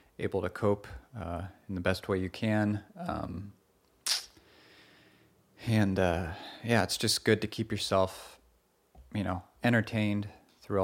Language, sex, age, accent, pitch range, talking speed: English, male, 30-49, American, 90-105 Hz, 135 wpm